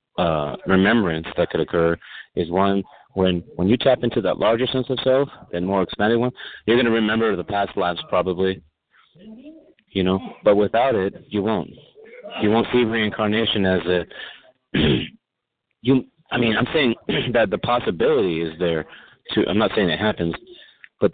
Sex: male